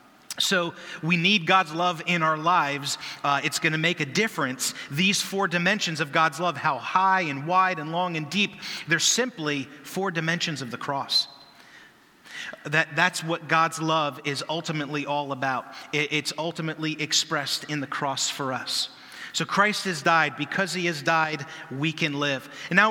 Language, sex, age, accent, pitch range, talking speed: English, male, 30-49, American, 155-185 Hz, 175 wpm